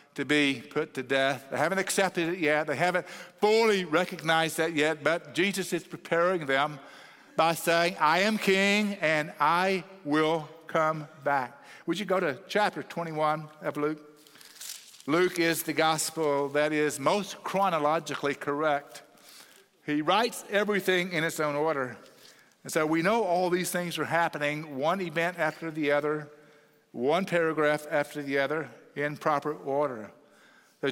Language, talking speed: English, 150 wpm